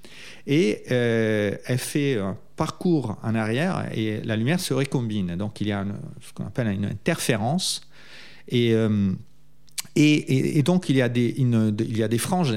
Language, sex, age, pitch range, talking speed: French, male, 40-59, 110-145 Hz, 145 wpm